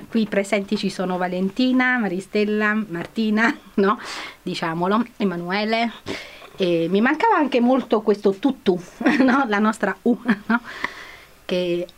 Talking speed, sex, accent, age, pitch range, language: 95 wpm, female, native, 30-49, 180-240 Hz, Italian